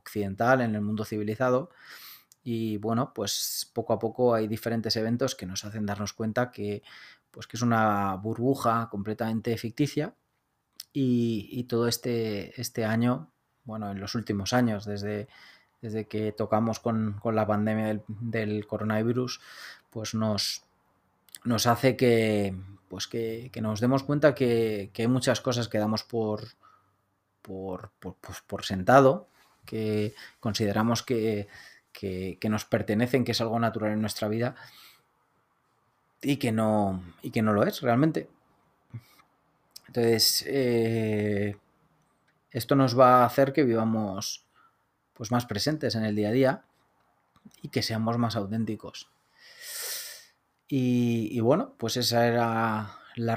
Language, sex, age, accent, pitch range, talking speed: Spanish, male, 20-39, Spanish, 105-125 Hz, 135 wpm